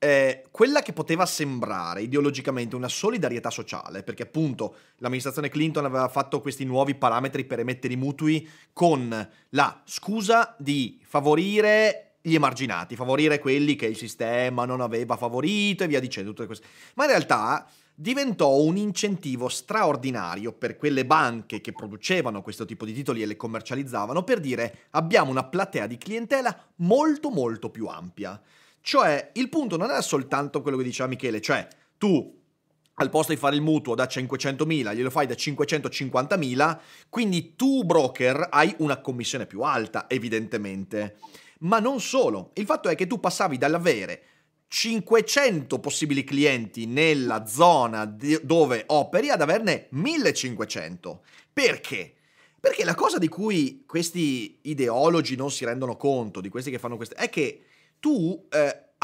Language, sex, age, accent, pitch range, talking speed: Italian, male, 30-49, native, 120-175 Hz, 150 wpm